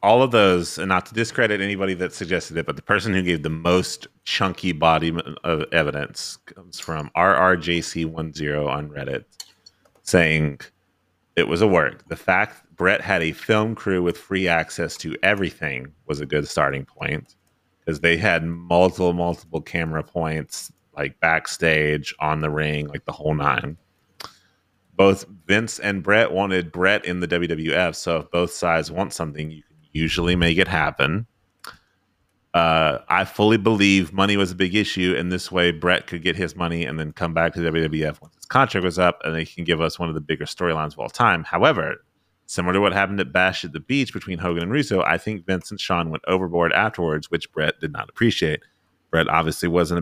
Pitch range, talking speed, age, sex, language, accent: 80-95 Hz, 190 wpm, 30-49, male, English, American